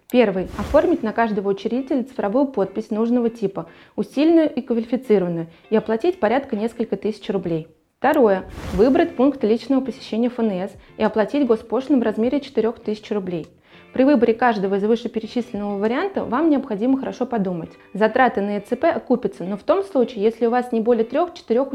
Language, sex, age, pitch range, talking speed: Russian, female, 20-39, 205-250 Hz, 155 wpm